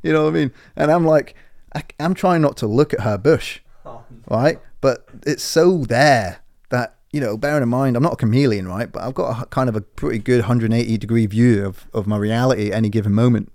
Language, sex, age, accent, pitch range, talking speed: English, male, 30-49, British, 100-125 Hz, 235 wpm